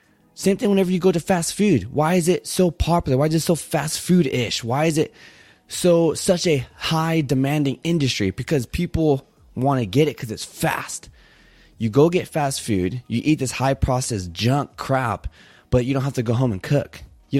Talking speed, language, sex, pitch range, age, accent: 195 wpm, English, male, 125-155 Hz, 20-39, American